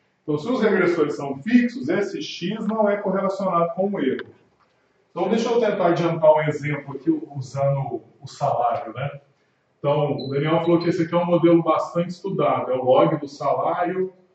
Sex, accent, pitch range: male, Brazilian, 150-200 Hz